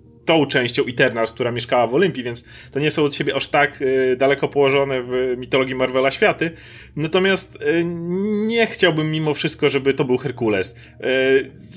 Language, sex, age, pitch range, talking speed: Polish, male, 30-49, 130-165 Hz, 170 wpm